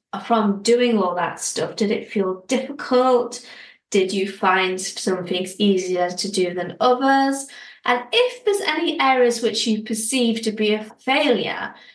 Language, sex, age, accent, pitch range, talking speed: English, female, 30-49, British, 210-250 Hz, 155 wpm